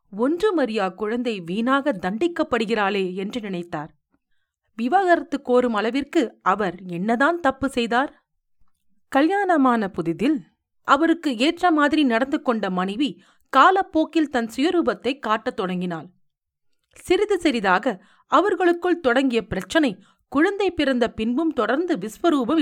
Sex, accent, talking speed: female, native, 95 wpm